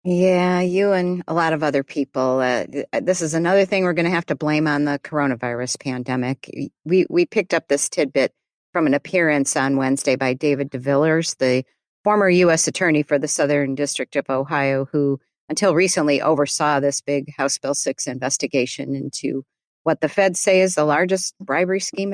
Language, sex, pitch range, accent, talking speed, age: English, female, 140-170 Hz, American, 180 wpm, 50-69